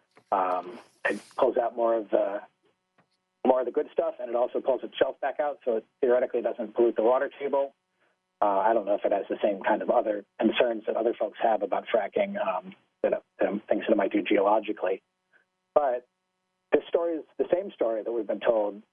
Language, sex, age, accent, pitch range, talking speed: English, male, 40-59, American, 115-185 Hz, 210 wpm